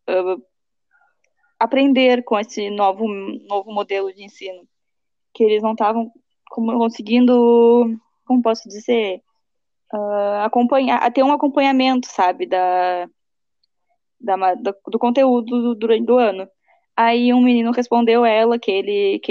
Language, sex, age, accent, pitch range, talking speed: Portuguese, female, 10-29, Brazilian, 215-270 Hz, 125 wpm